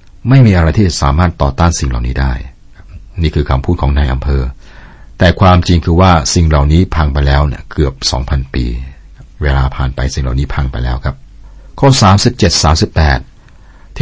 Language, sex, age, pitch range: Thai, male, 60-79, 70-90 Hz